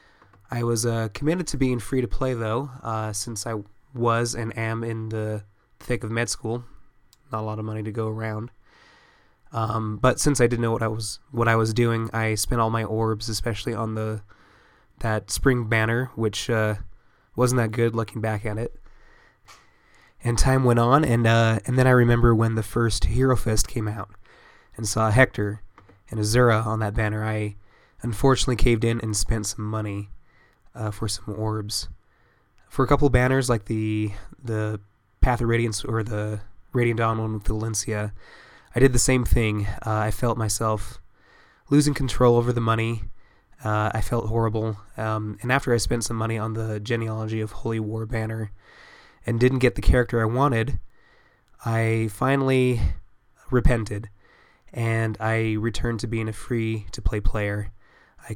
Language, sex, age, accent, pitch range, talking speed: English, male, 20-39, American, 105-120 Hz, 175 wpm